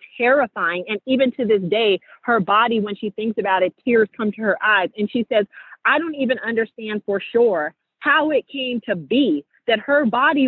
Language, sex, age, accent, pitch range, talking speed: English, female, 40-59, American, 200-245 Hz, 200 wpm